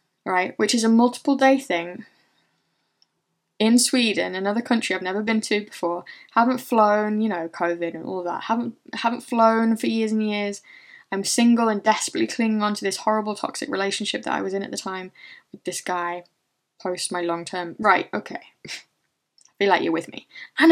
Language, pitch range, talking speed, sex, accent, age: English, 195-240 Hz, 190 wpm, female, British, 10-29